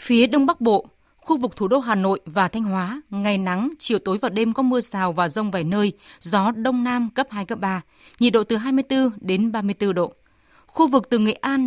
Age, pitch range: 20-39, 195-245 Hz